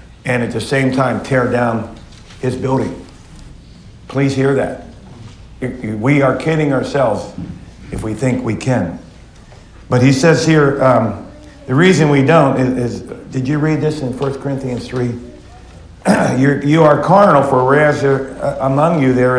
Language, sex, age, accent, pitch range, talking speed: English, male, 50-69, American, 110-140 Hz, 160 wpm